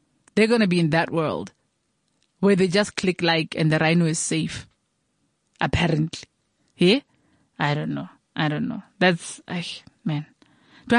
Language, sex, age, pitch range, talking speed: English, female, 30-49, 160-200 Hz, 155 wpm